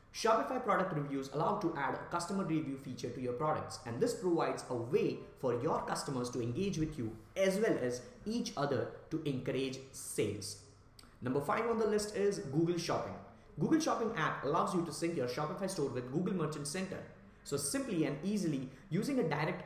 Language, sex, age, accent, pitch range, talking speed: English, male, 20-39, Indian, 130-180 Hz, 190 wpm